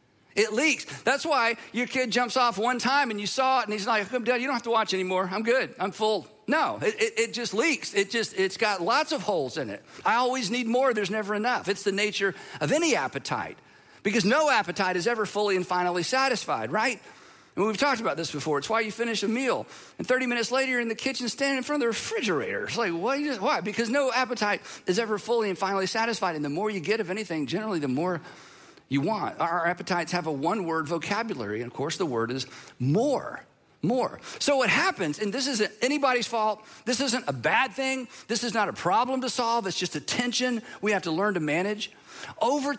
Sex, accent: male, American